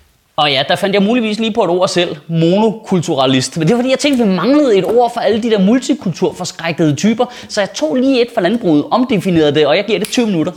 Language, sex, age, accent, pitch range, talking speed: Danish, male, 30-49, native, 155-220 Hz, 250 wpm